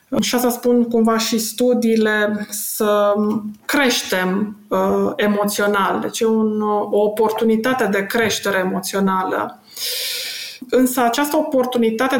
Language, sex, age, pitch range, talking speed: Romanian, female, 20-39, 205-235 Hz, 100 wpm